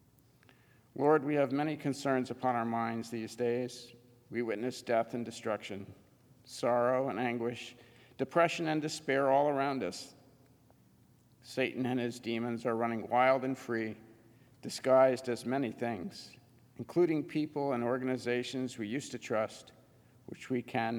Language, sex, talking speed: English, male, 135 wpm